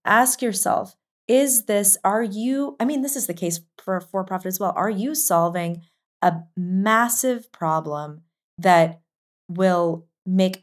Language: English